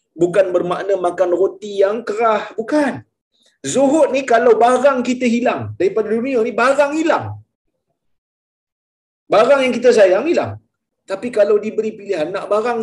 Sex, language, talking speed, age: male, Malayalam, 135 wpm, 30-49